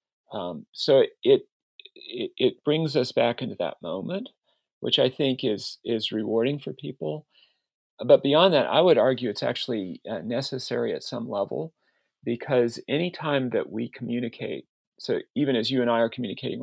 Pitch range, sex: 115-155 Hz, male